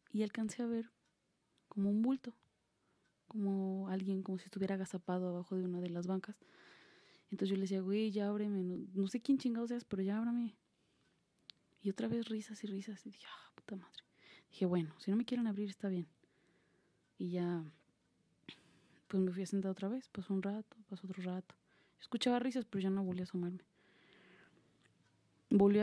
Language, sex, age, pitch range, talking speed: Spanish, female, 20-39, 180-205 Hz, 190 wpm